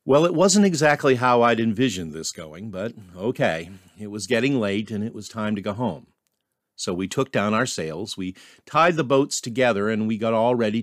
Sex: male